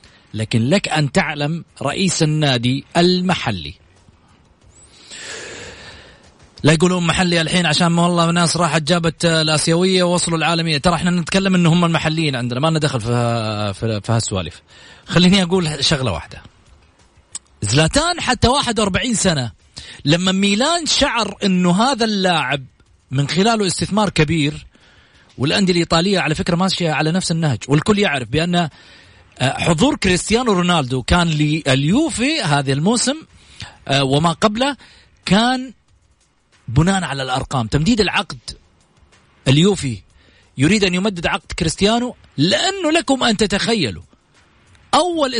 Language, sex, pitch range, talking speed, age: Arabic, male, 130-200 Hz, 115 wpm, 30-49